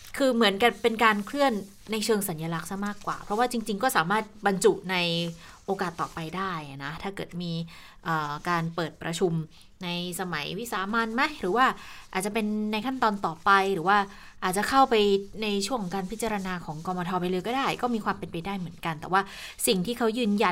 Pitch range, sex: 170-215 Hz, female